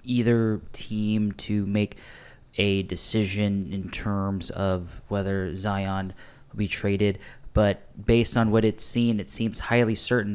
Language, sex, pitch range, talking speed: English, male, 100-115 Hz, 140 wpm